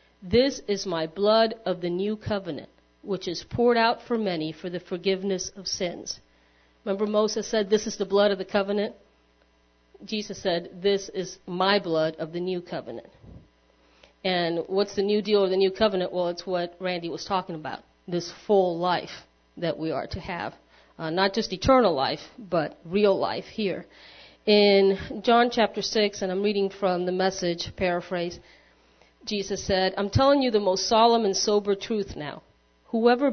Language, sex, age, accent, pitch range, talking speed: English, female, 40-59, American, 175-215 Hz, 175 wpm